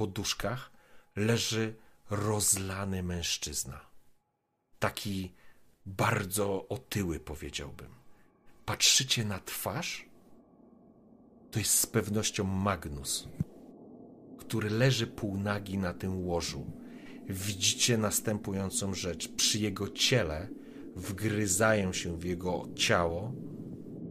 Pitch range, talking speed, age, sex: 90-110 Hz, 80 wpm, 40-59, male